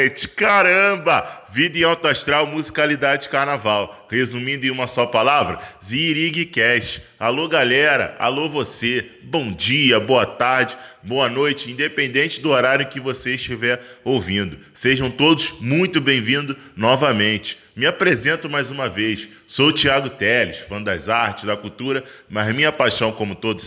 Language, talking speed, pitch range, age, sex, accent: Portuguese, 135 wpm, 105-140 Hz, 10-29, male, Brazilian